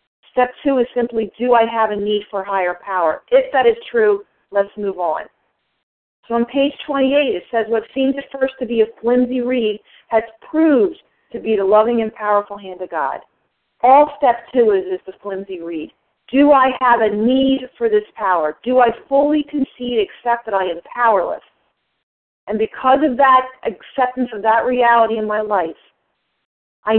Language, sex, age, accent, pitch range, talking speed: English, female, 40-59, American, 210-270 Hz, 180 wpm